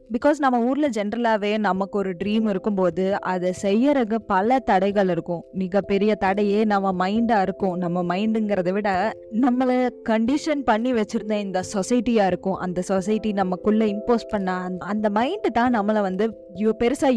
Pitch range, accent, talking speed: 190-230 Hz, native, 140 wpm